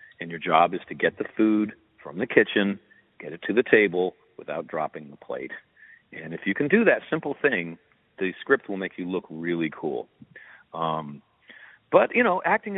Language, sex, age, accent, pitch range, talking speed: English, male, 50-69, American, 80-115 Hz, 195 wpm